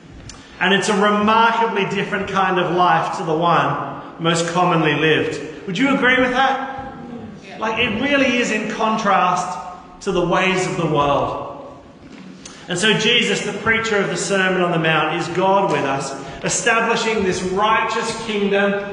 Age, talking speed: 40-59, 160 wpm